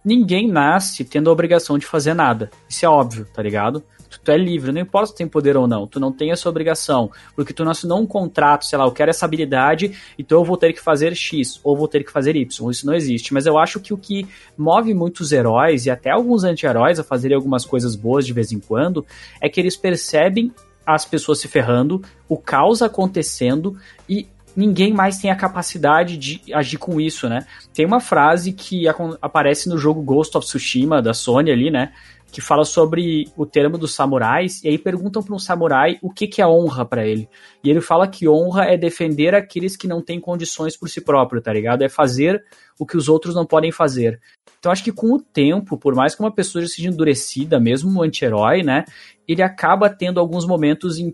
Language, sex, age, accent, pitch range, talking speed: Portuguese, male, 20-39, Brazilian, 145-180 Hz, 215 wpm